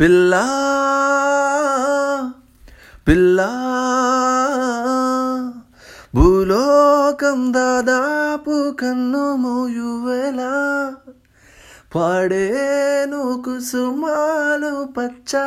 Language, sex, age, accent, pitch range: Telugu, male, 20-39, native, 180-255 Hz